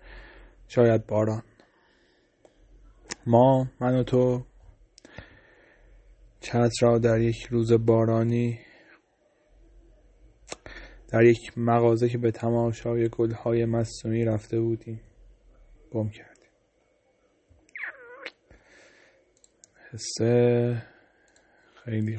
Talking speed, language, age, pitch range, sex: 70 wpm, Persian, 30-49, 110-120 Hz, male